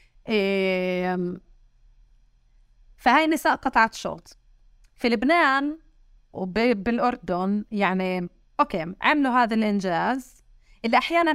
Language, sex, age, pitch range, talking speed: Arabic, female, 30-49, 195-265 Hz, 80 wpm